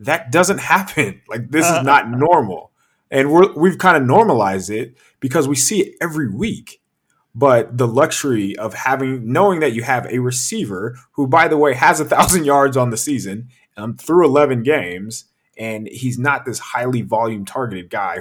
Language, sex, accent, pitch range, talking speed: English, male, American, 110-150 Hz, 175 wpm